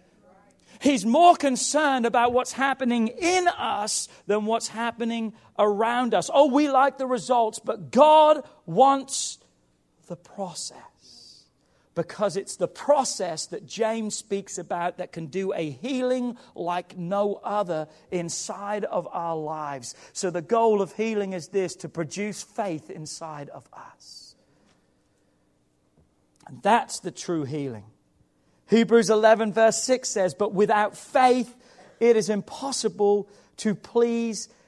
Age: 40-59